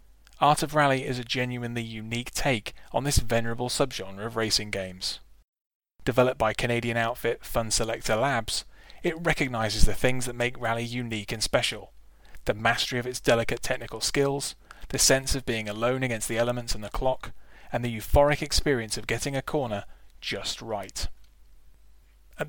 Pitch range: 110-130 Hz